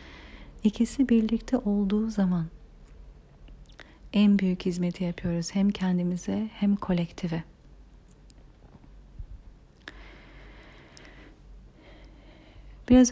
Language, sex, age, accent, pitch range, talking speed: Turkish, female, 40-59, native, 175-205 Hz, 60 wpm